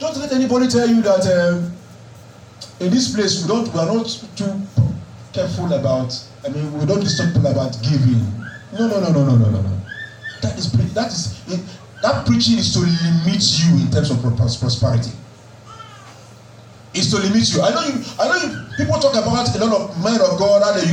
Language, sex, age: English, male, 40-59